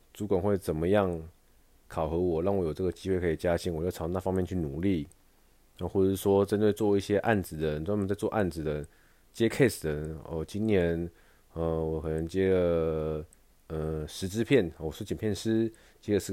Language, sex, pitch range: Chinese, male, 80-100 Hz